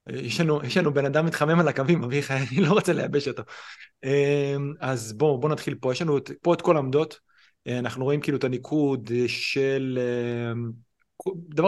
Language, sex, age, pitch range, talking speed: Hebrew, male, 30-49, 115-150 Hz, 170 wpm